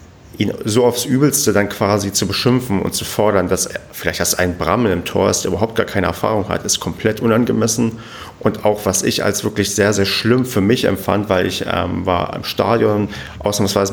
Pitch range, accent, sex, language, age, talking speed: 95-115 Hz, German, male, German, 40-59, 205 wpm